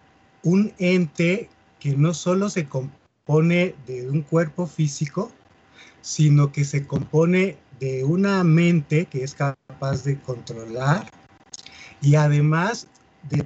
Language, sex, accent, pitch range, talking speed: Spanish, male, Mexican, 145-180 Hz, 115 wpm